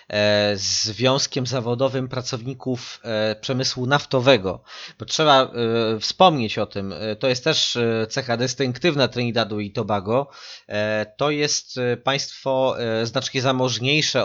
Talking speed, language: 100 wpm, Polish